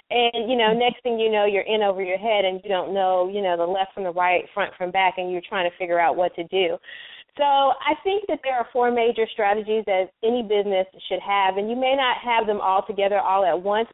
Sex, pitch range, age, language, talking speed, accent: female, 195-230 Hz, 30-49, English, 260 wpm, American